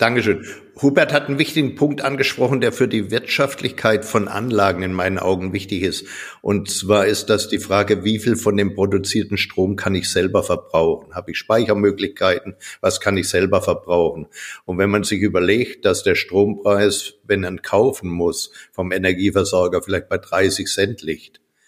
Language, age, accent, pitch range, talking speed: German, 60-79, German, 95-105 Hz, 170 wpm